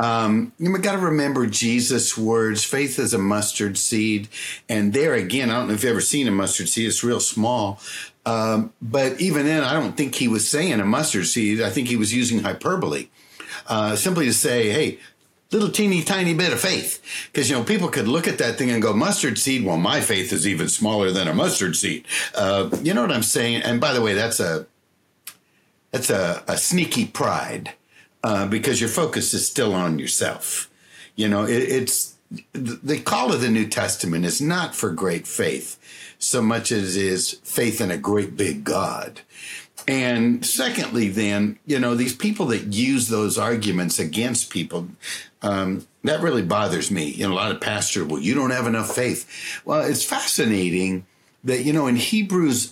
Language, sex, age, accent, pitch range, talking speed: English, male, 60-79, American, 105-125 Hz, 190 wpm